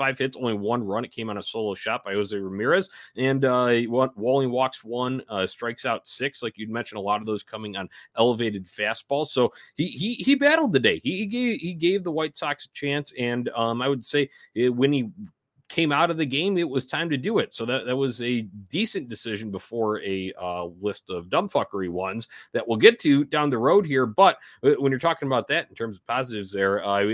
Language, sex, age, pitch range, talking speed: English, male, 30-49, 105-140 Hz, 235 wpm